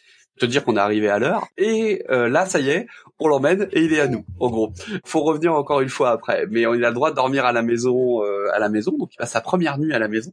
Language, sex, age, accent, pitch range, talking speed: French, male, 20-39, French, 110-145 Hz, 315 wpm